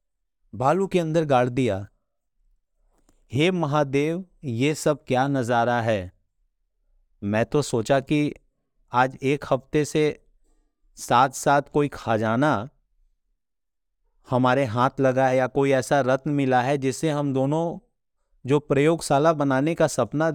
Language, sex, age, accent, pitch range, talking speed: Hindi, male, 30-49, native, 125-160 Hz, 125 wpm